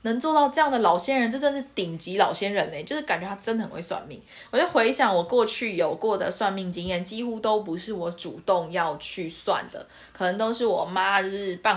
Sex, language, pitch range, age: female, Chinese, 170-220 Hz, 20-39